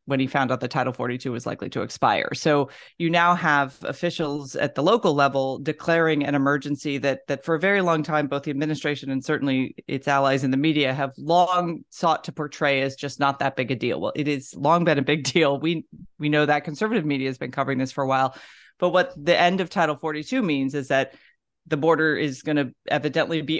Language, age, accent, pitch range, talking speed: English, 30-49, American, 140-170 Hz, 230 wpm